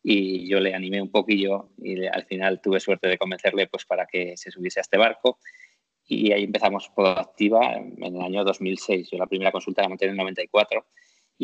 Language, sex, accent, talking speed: Spanish, male, Spanish, 210 wpm